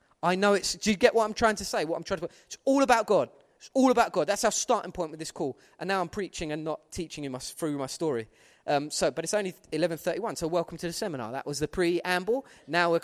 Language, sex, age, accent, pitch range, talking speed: English, male, 20-39, British, 170-235 Hz, 270 wpm